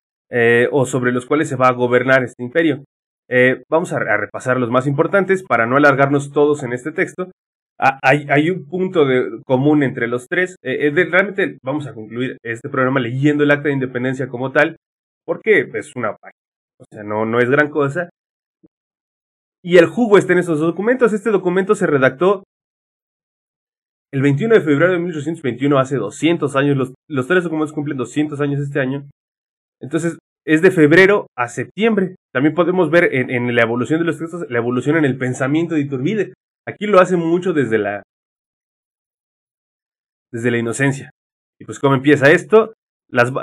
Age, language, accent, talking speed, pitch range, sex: 20-39, Spanish, Mexican, 180 wpm, 125-170 Hz, male